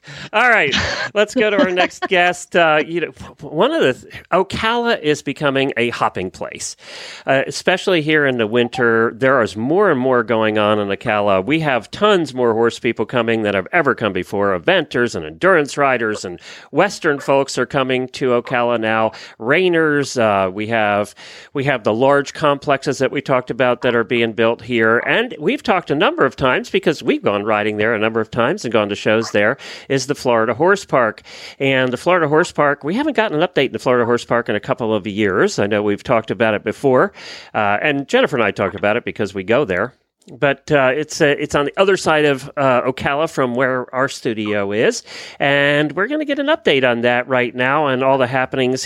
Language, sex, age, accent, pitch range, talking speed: English, male, 40-59, American, 115-150 Hz, 215 wpm